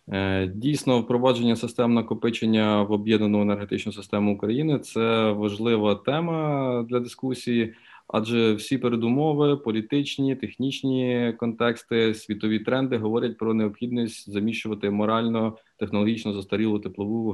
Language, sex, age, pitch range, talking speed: Ukrainian, male, 20-39, 105-120 Hz, 105 wpm